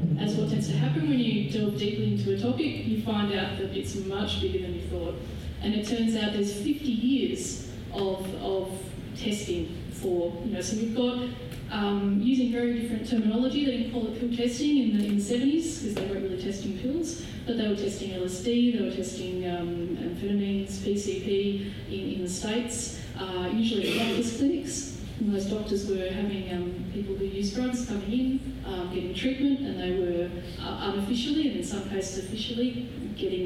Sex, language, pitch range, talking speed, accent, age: female, English, 195-240 Hz, 190 wpm, Australian, 10-29